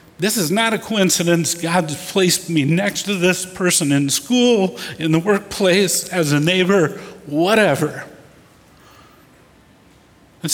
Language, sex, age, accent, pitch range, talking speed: English, male, 50-69, American, 160-205 Hz, 125 wpm